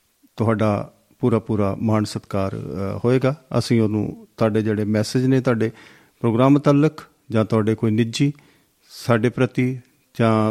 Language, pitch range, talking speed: Punjabi, 110-140 Hz, 125 wpm